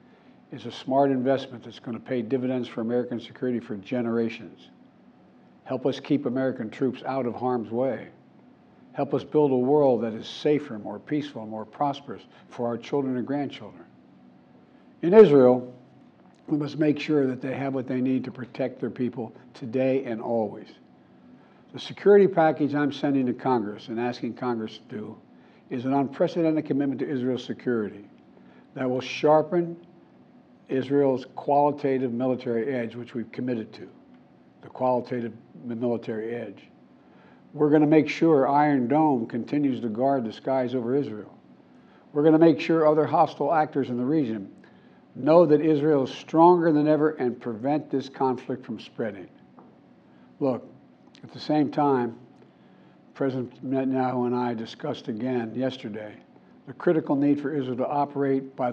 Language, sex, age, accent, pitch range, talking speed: English, male, 60-79, American, 120-145 Hz, 155 wpm